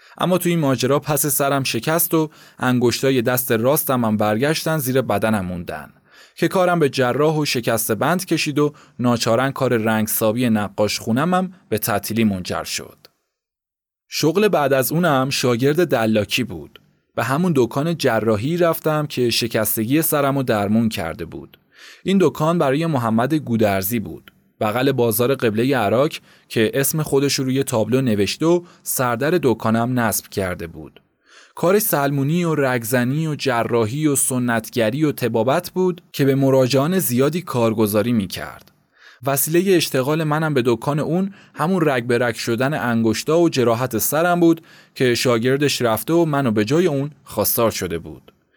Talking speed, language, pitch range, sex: 145 wpm, Persian, 115-155 Hz, male